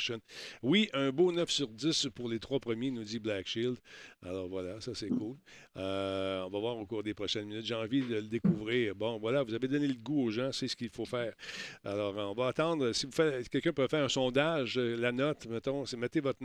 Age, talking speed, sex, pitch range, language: 50-69, 235 wpm, male, 110-140 Hz, French